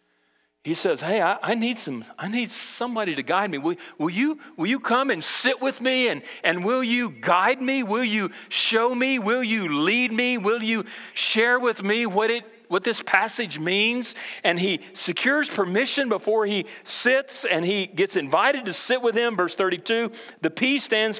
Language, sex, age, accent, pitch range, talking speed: English, male, 40-59, American, 170-240 Hz, 190 wpm